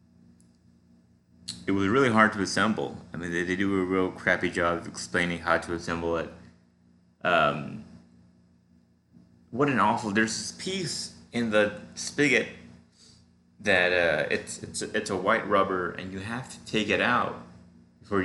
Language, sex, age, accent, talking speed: English, male, 30-49, American, 155 wpm